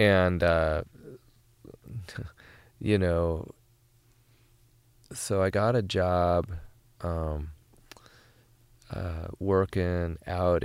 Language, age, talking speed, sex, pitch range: English, 20-39, 75 wpm, male, 80-110 Hz